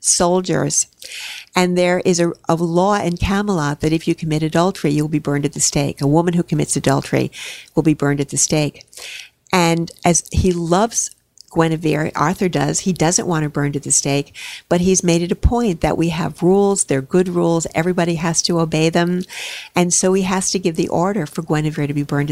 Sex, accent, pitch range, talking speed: female, American, 150-175 Hz, 205 wpm